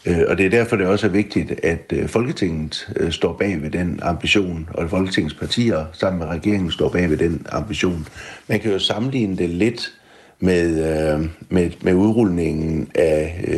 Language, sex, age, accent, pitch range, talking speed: Danish, male, 60-79, native, 80-105 Hz, 170 wpm